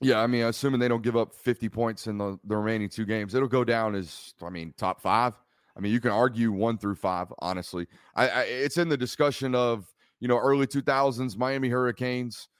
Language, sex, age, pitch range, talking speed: English, male, 30-49, 115-145 Hz, 210 wpm